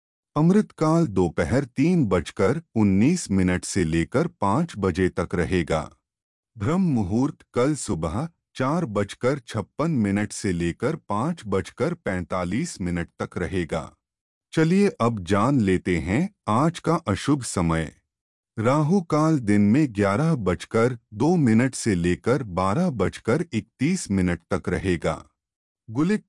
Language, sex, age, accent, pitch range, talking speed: Hindi, male, 30-49, native, 90-150 Hz, 125 wpm